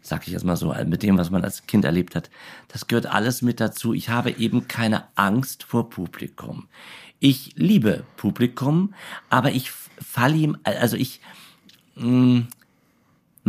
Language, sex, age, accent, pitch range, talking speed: German, male, 50-69, German, 100-150 Hz, 155 wpm